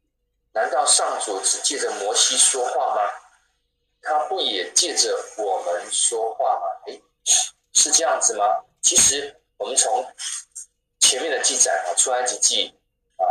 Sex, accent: male, native